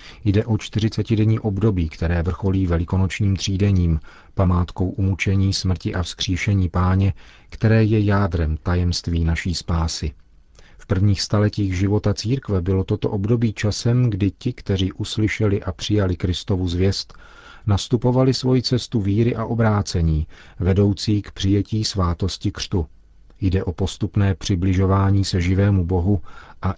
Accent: native